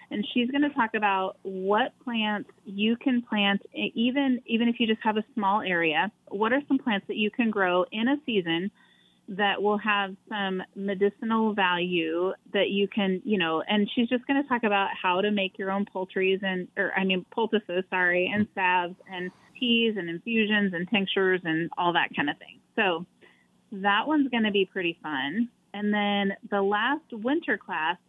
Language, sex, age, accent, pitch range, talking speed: English, female, 30-49, American, 195-235 Hz, 190 wpm